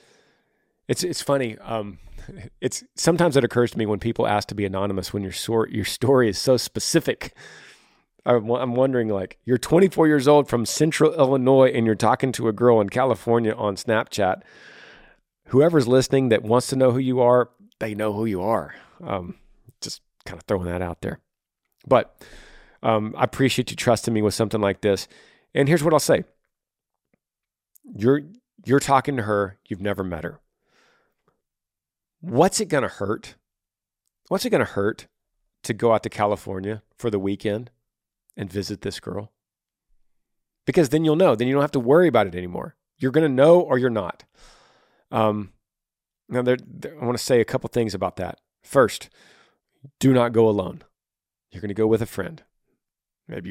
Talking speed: 180 wpm